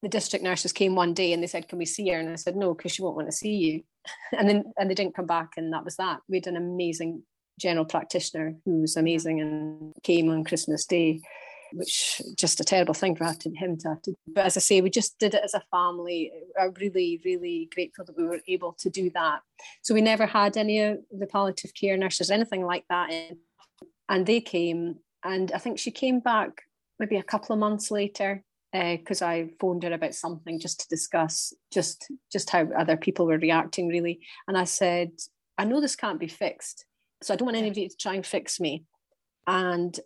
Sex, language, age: female, English, 30-49